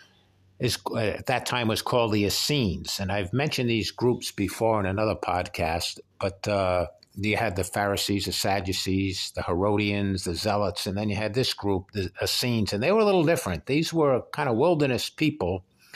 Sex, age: male, 60-79